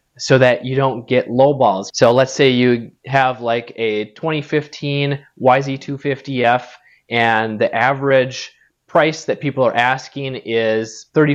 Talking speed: 135 wpm